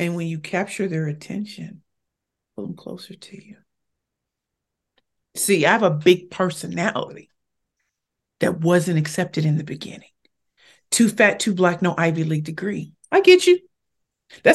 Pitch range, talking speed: 155-200 Hz, 145 wpm